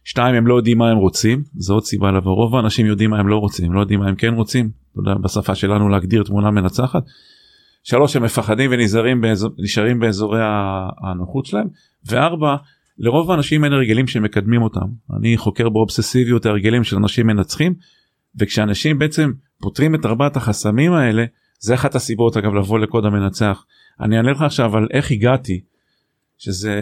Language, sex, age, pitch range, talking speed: Hebrew, male, 40-59, 105-135 Hz, 170 wpm